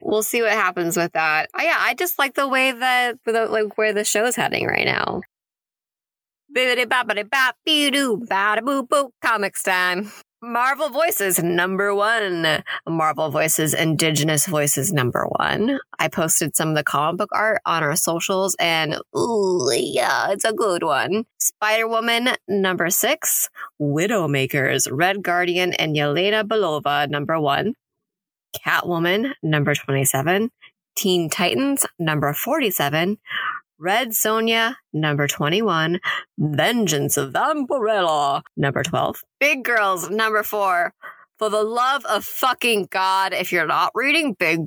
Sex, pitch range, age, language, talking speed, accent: female, 165-235 Hz, 20-39, English, 125 wpm, American